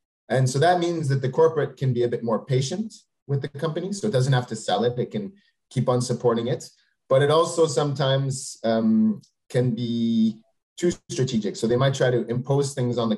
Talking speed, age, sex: 215 wpm, 30-49, male